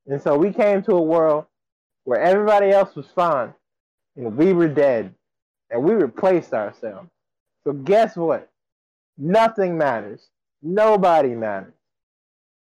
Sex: male